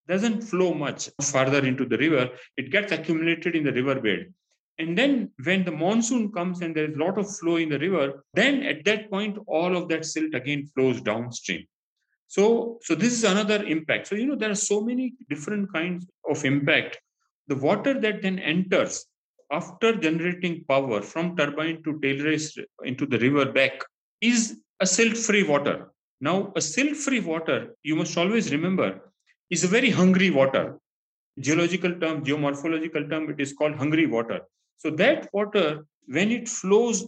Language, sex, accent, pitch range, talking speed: Telugu, male, native, 150-205 Hz, 175 wpm